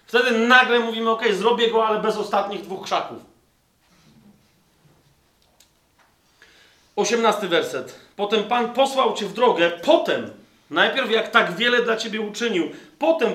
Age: 40-59